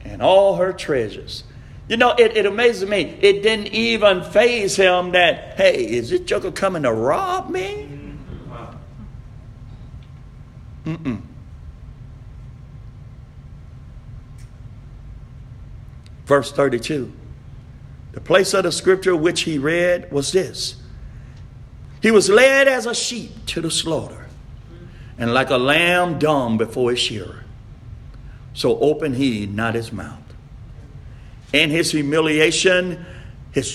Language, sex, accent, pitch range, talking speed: English, male, American, 125-195 Hz, 115 wpm